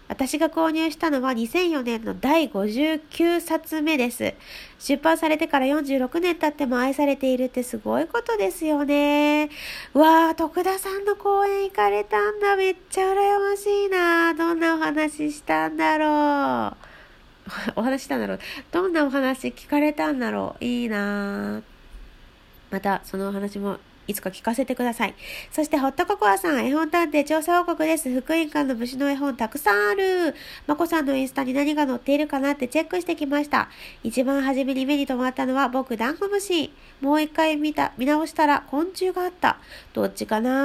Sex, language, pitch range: female, Japanese, 260-340 Hz